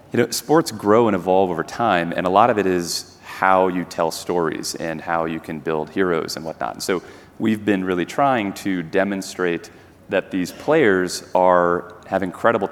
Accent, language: American, English